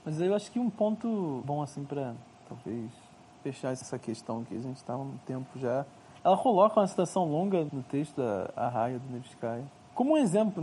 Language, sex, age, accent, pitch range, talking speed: Portuguese, male, 20-39, Brazilian, 130-165 Hz, 200 wpm